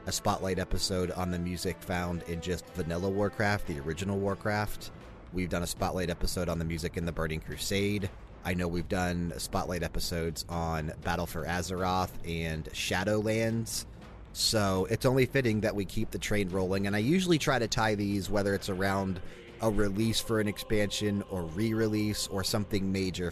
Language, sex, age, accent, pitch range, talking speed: English, male, 30-49, American, 90-105 Hz, 175 wpm